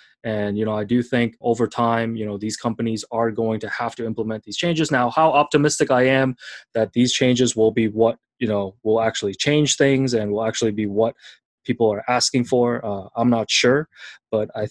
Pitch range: 110-135 Hz